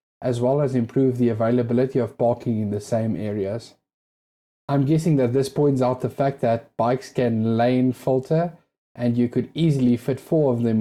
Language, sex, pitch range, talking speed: English, male, 115-140 Hz, 185 wpm